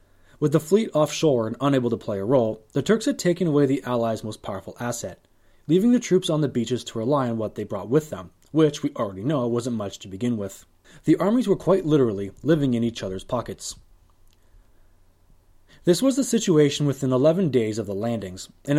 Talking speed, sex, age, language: 205 wpm, male, 20-39, English